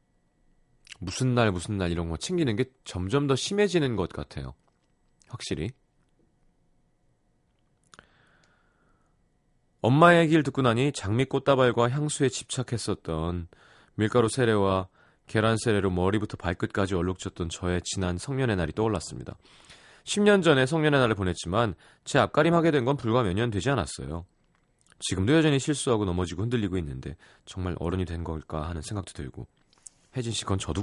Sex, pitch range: male, 90-140 Hz